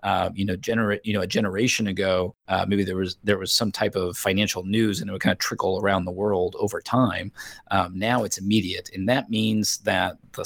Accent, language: American, English